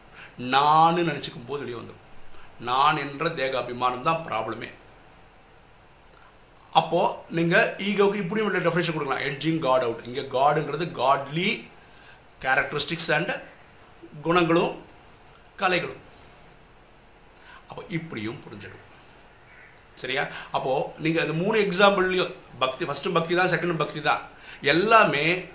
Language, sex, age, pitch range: Tamil, male, 60-79, 130-170 Hz